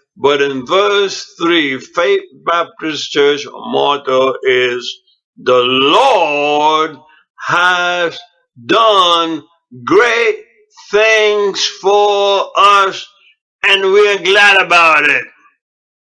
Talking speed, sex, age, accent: 85 wpm, male, 60-79, American